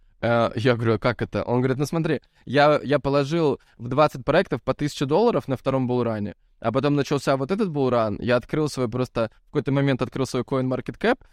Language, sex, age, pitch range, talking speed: Russian, male, 20-39, 120-150 Hz, 205 wpm